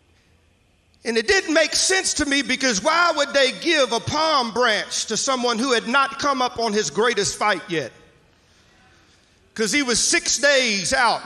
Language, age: English, 40-59